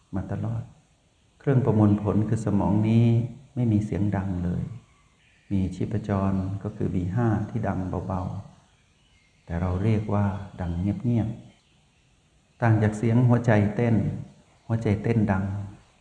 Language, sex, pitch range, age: Thai, male, 100-115 Hz, 60-79